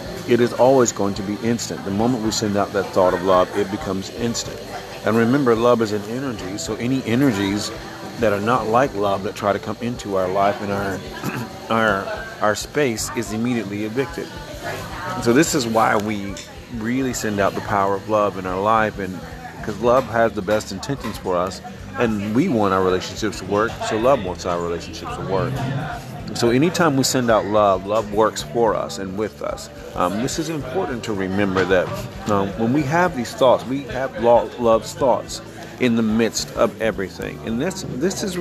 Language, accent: English, American